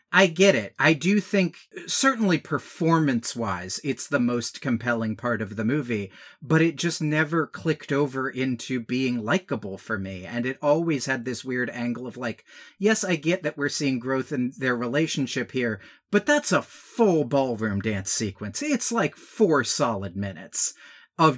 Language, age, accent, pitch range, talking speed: English, 40-59, American, 125-175 Hz, 170 wpm